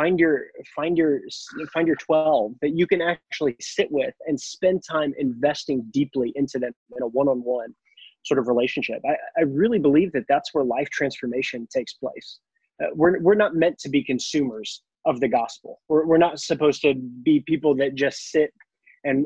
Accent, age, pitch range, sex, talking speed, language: American, 20-39, 135-160 Hz, male, 180 wpm, English